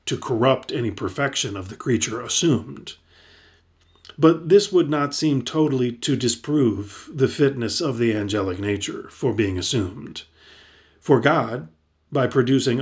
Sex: male